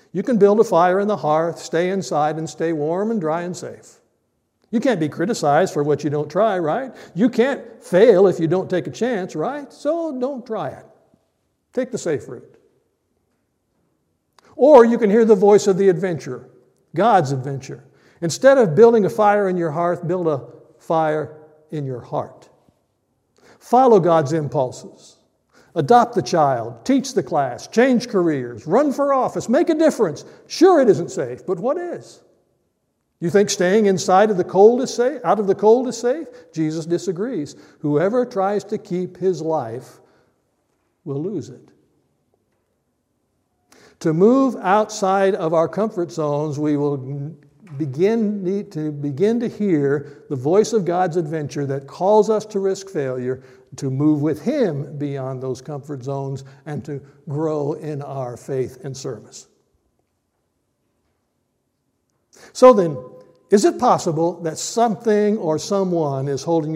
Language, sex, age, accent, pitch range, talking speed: English, male, 60-79, American, 150-210 Hz, 155 wpm